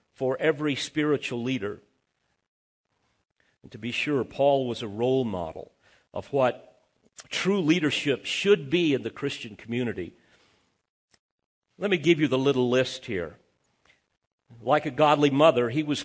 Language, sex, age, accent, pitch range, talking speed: English, male, 50-69, American, 130-170 Hz, 140 wpm